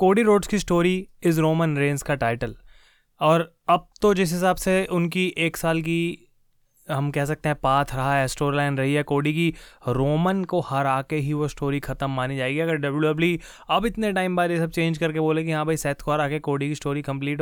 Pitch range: 145-175 Hz